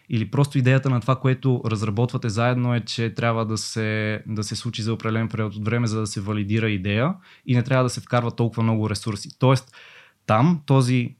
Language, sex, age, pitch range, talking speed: Bulgarian, male, 20-39, 110-125 Hz, 205 wpm